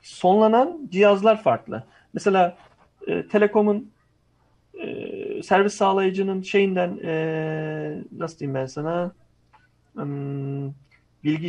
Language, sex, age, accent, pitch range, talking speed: Turkish, male, 40-59, native, 160-220 Hz, 90 wpm